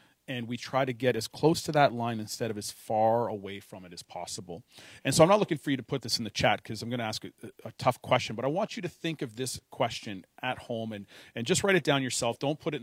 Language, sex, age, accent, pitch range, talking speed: English, male, 40-59, American, 110-140 Hz, 290 wpm